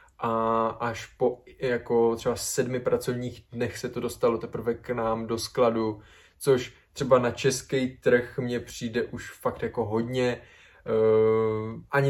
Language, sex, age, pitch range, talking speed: Czech, male, 20-39, 115-135 Hz, 145 wpm